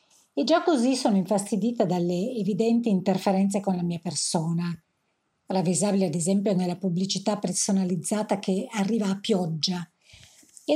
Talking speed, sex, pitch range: 130 wpm, female, 180-235 Hz